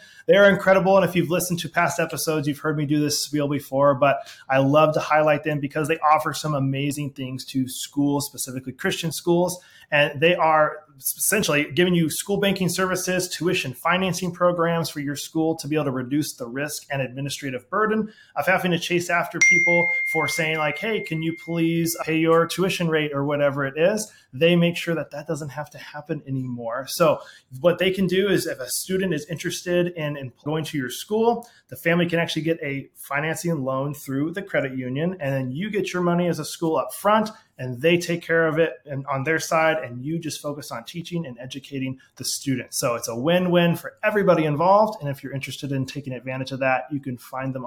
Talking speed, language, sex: 210 wpm, English, male